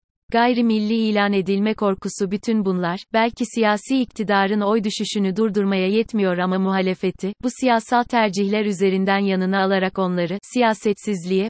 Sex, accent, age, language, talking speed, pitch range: female, native, 30-49, Turkish, 125 wpm, 190-225 Hz